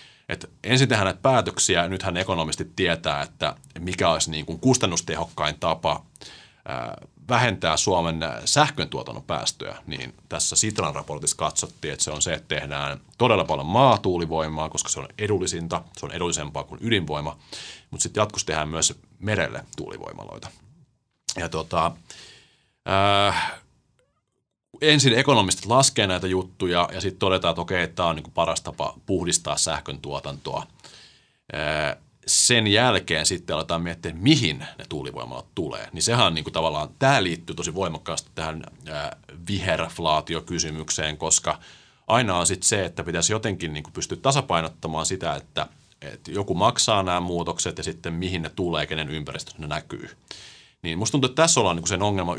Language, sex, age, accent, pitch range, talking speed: Finnish, male, 30-49, native, 80-100 Hz, 135 wpm